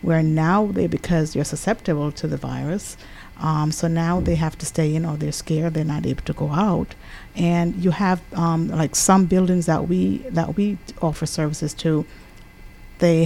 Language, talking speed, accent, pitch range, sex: English, 185 wpm, American, 155-185 Hz, female